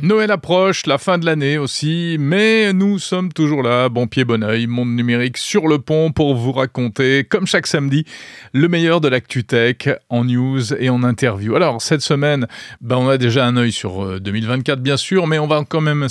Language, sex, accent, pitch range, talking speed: French, male, French, 120-165 Hz, 205 wpm